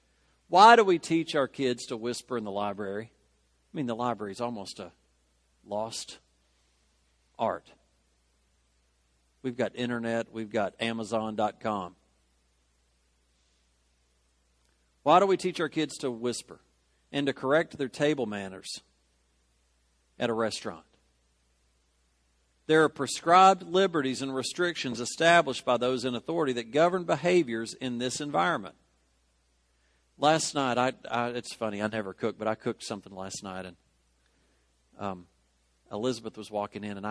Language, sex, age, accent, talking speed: English, male, 50-69, American, 135 wpm